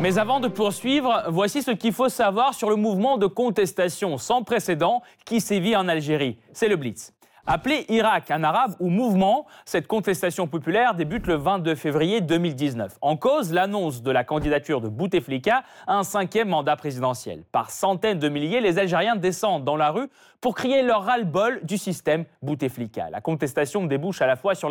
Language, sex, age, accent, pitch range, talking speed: French, male, 30-49, French, 150-220 Hz, 180 wpm